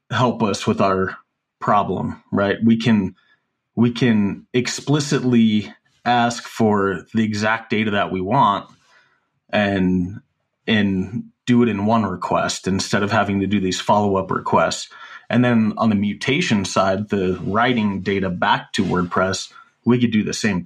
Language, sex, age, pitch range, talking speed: English, male, 30-49, 105-125 Hz, 150 wpm